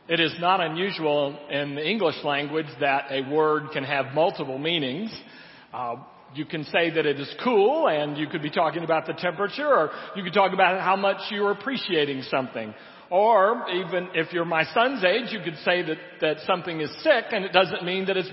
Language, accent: English, American